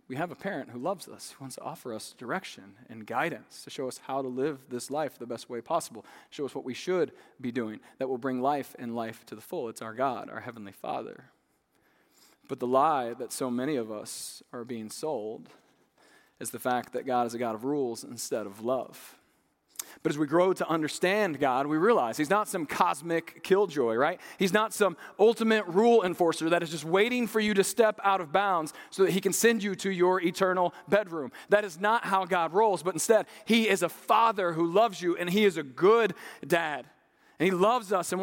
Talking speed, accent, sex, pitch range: 220 wpm, American, male, 170-230 Hz